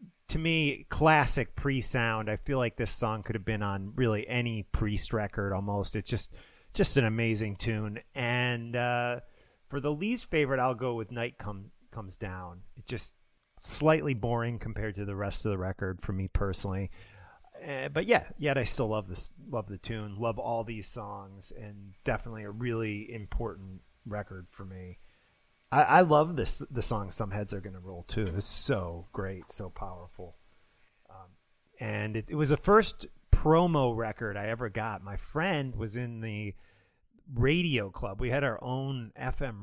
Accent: American